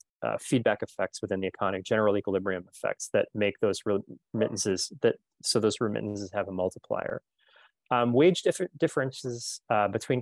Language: English